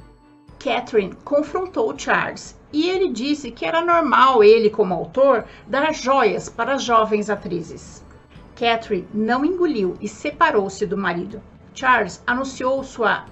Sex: female